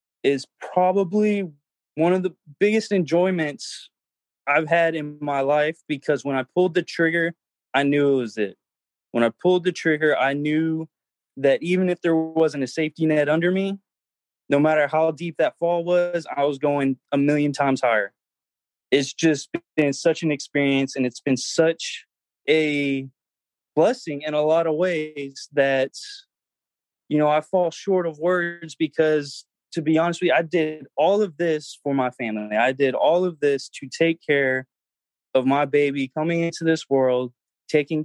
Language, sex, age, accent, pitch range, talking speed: English, male, 20-39, American, 135-165 Hz, 170 wpm